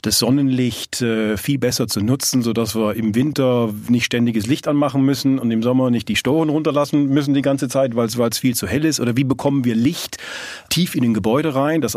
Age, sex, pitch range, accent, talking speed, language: 40-59, male, 110-135 Hz, German, 225 wpm, German